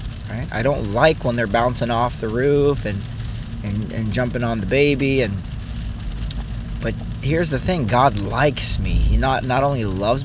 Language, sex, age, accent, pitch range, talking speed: English, male, 30-49, American, 105-125 Hz, 175 wpm